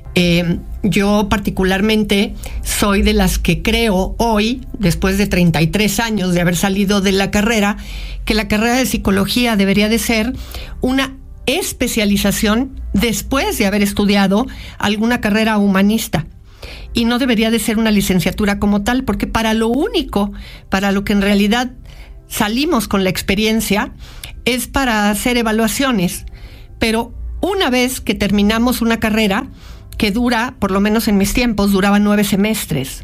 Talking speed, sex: 145 wpm, female